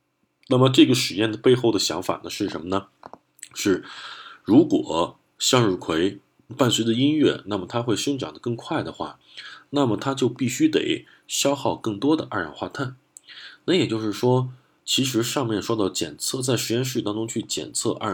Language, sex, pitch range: Chinese, male, 105-140 Hz